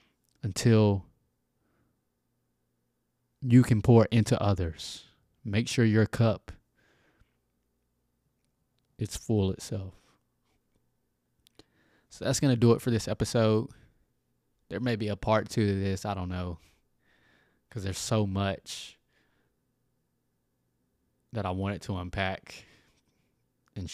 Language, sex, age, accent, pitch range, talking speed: English, male, 20-39, American, 95-115 Hz, 110 wpm